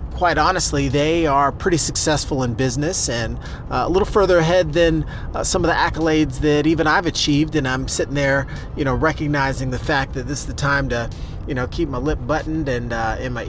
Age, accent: 30-49, American